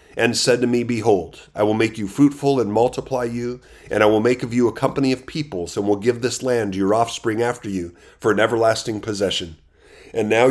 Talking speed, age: 215 wpm, 30-49